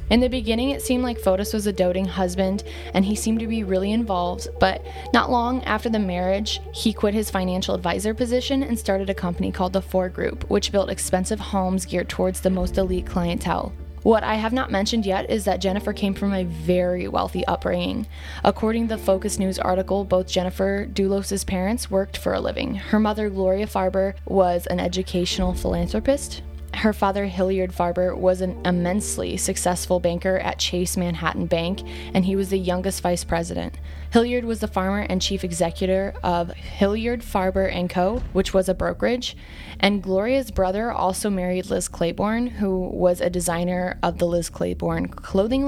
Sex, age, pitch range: female, 20-39, 175-205 Hz